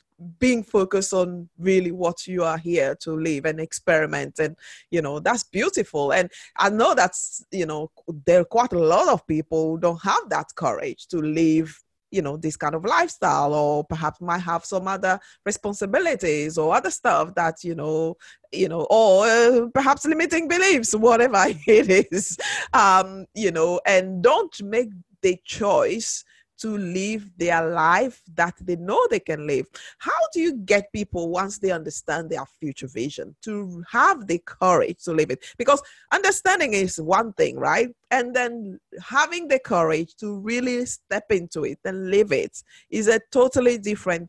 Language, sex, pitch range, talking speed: English, female, 170-240 Hz, 170 wpm